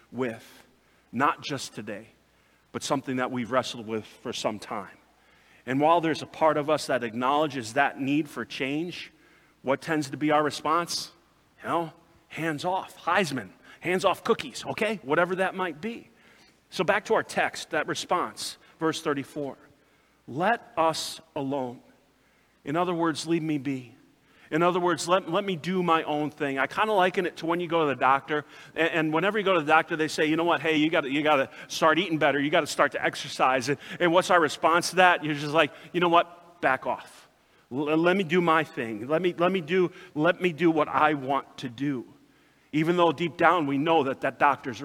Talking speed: 210 wpm